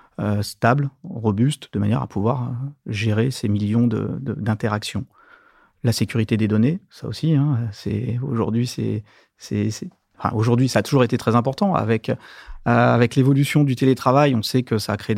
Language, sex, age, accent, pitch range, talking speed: French, male, 30-49, French, 110-130 Hz, 175 wpm